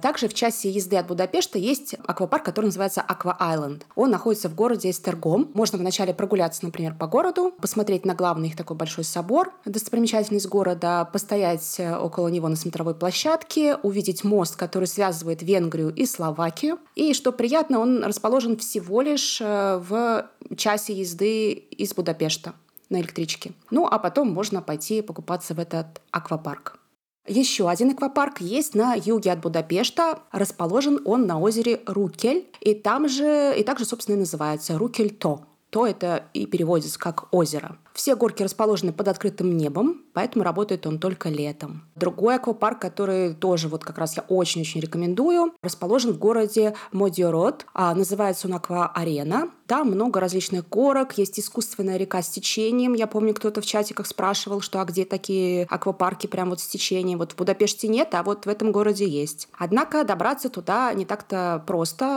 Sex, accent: female, native